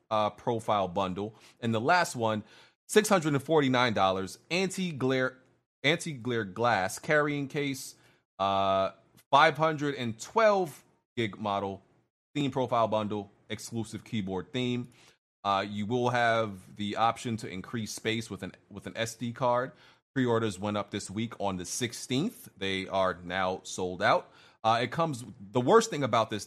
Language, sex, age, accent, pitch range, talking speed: English, male, 30-49, American, 100-130 Hz, 155 wpm